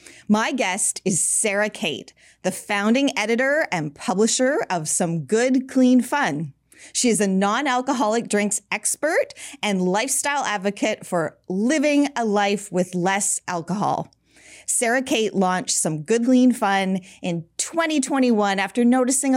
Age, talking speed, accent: 30-49, 130 wpm, American